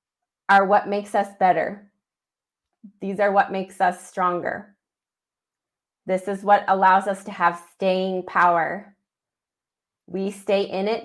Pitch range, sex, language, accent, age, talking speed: 185-215 Hz, female, English, American, 20-39, 130 wpm